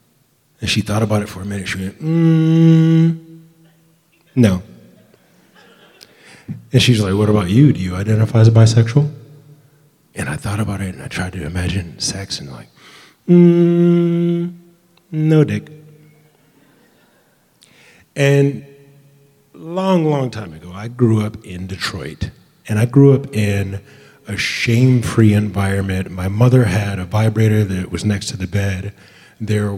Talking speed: 140 wpm